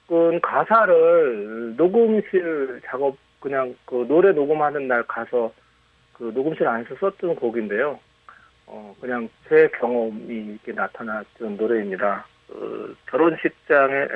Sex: male